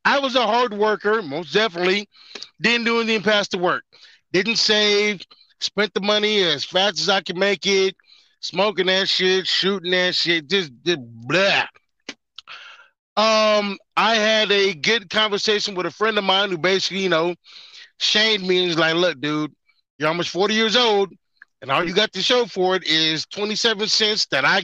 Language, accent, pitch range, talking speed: English, American, 160-205 Hz, 180 wpm